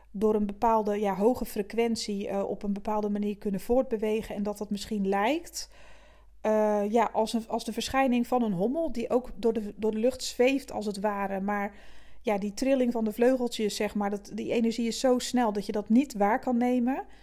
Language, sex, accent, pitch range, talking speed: Dutch, female, Dutch, 215-250 Hz, 210 wpm